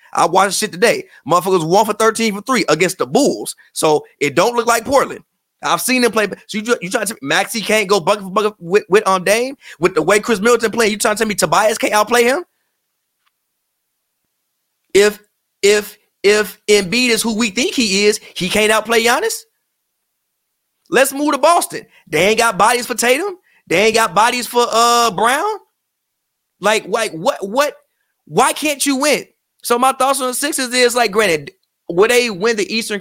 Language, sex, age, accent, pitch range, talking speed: English, male, 30-49, American, 175-235 Hz, 195 wpm